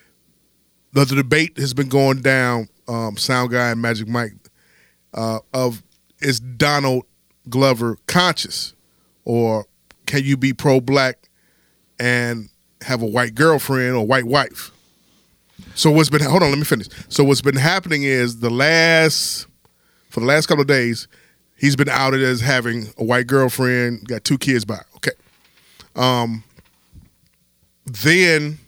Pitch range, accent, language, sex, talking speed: 115-140 Hz, American, English, male, 140 wpm